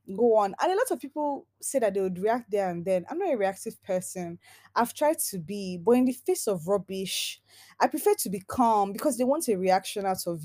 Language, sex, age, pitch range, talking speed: English, female, 20-39, 190-260 Hz, 240 wpm